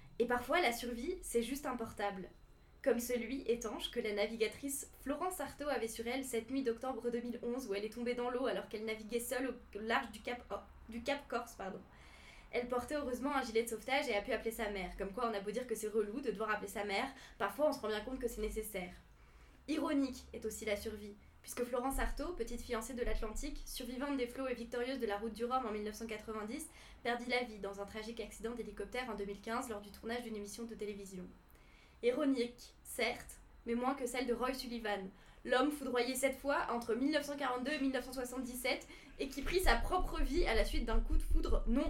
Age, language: 10-29, French